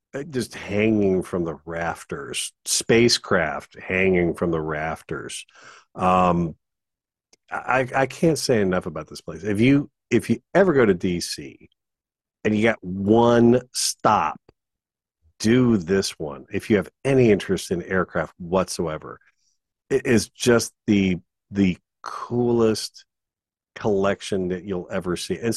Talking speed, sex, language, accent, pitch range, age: 130 wpm, male, English, American, 85-110 Hz, 40-59